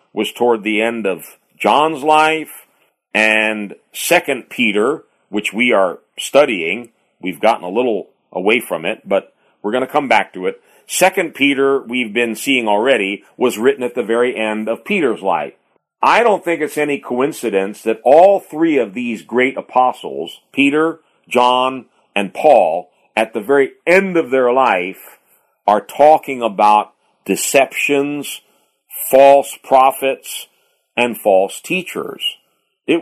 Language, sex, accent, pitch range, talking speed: English, male, American, 115-160 Hz, 140 wpm